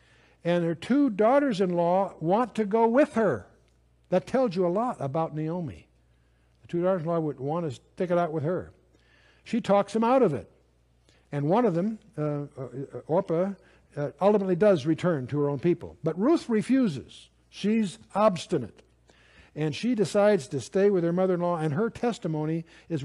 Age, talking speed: 60-79, 170 wpm